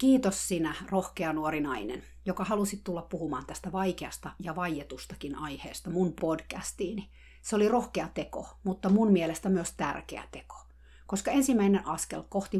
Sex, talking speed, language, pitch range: female, 140 wpm, Finnish, 150-195 Hz